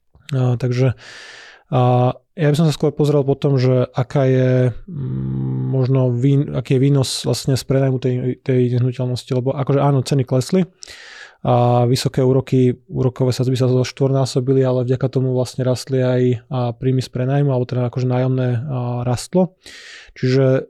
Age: 20-39